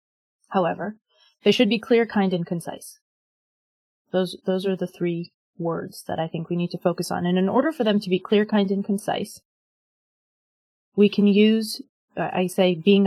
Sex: female